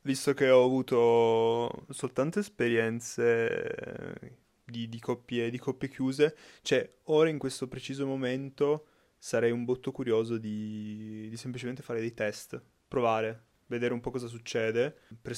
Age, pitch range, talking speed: 20-39, 115-130 Hz, 130 wpm